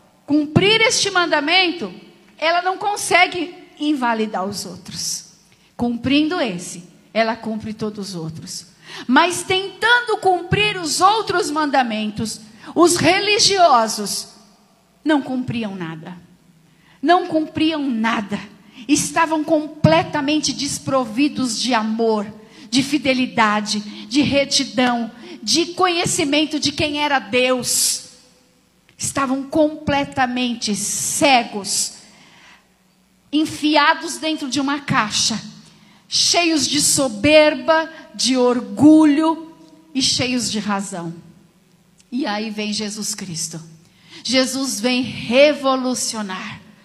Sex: female